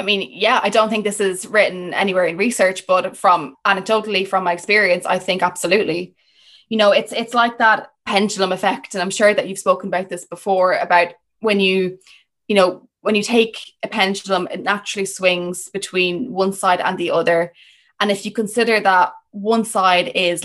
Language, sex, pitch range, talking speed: English, female, 180-210 Hz, 190 wpm